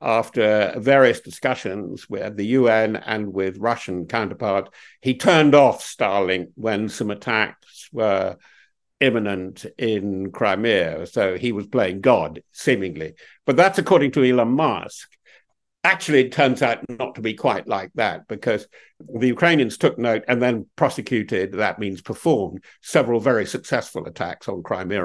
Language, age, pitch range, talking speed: English, 60-79, 110-150 Hz, 145 wpm